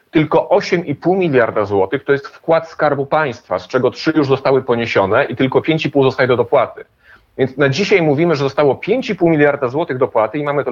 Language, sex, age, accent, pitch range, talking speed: Polish, male, 40-59, native, 115-145 Hz, 190 wpm